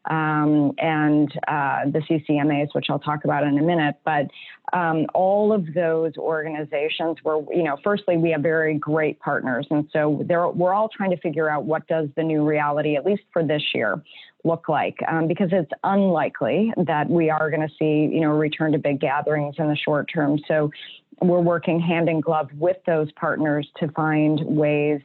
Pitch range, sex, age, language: 150-165 Hz, female, 30-49, English